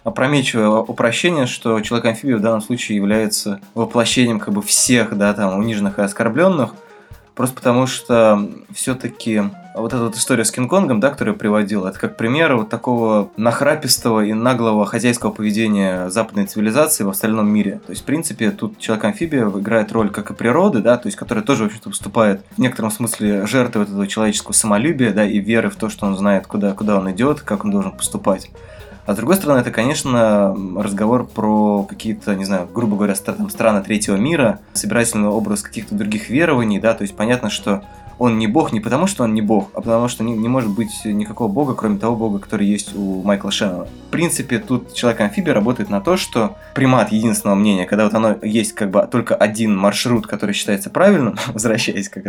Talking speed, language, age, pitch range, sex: 180 wpm, Russian, 20-39, 105-120 Hz, male